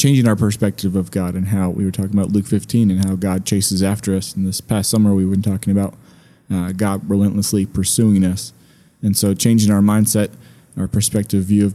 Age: 30-49